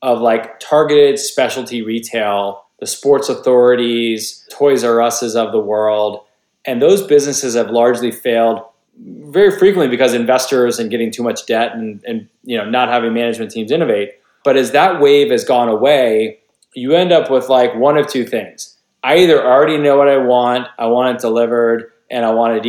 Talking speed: 180 wpm